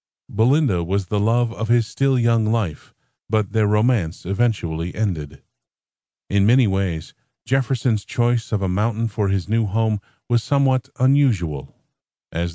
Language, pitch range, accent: English, 100-125 Hz, American